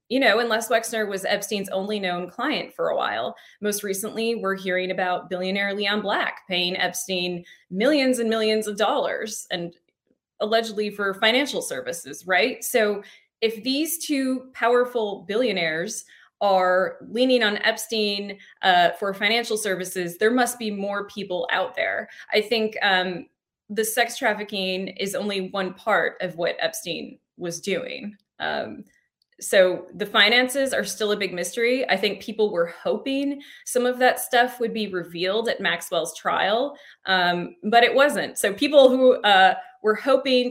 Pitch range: 185-235 Hz